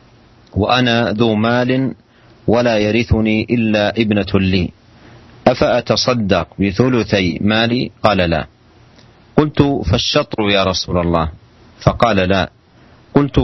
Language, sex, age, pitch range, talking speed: Malay, male, 40-59, 100-120 Hz, 95 wpm